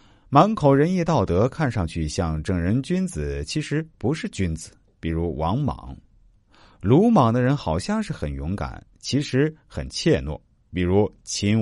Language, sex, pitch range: Chinese, male, 85-120 Hz